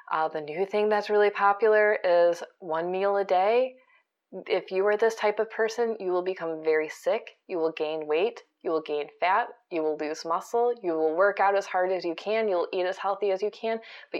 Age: 20-39